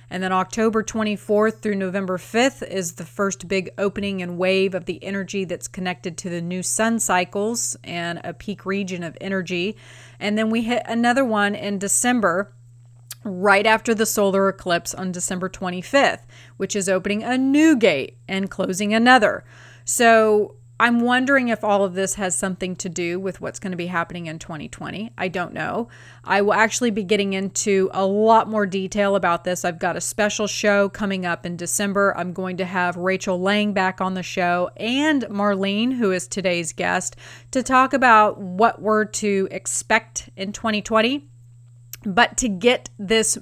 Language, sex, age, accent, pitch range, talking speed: English, female, 30-49, American, 180-210 Hz, 175 wpm